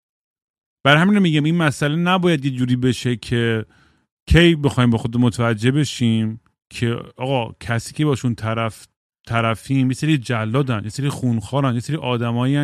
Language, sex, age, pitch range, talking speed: Persian, male, 30-49, 125-170 Hz, 155 wpm